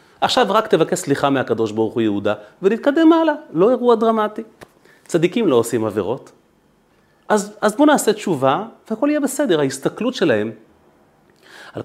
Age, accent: 30-49, native